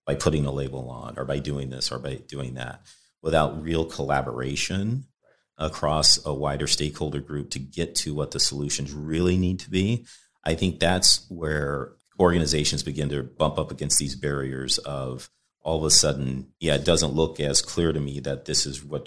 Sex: male